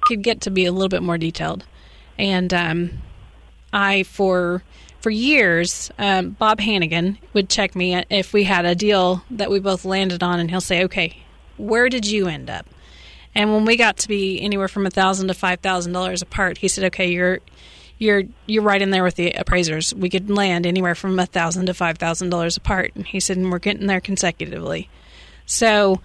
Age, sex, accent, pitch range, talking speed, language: 30-49, female, American, 180-210 Hz, 205 wpm, English